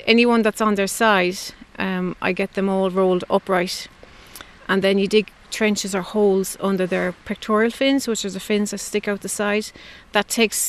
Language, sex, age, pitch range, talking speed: English, female, 30-49, 190-225 Hz, 190 wpm